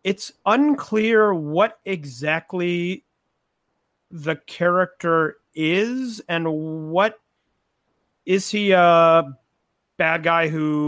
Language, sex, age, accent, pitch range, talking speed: English, male, 30-49, American, 145-175 Hz, 85 wpm